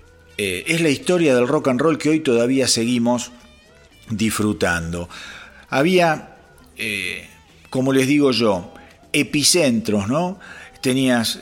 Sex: male